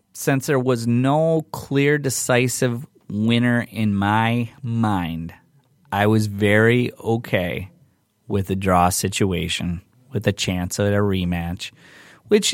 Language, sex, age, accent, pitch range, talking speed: English, male, 30-49, American, 100-125 Hz, 120 wpm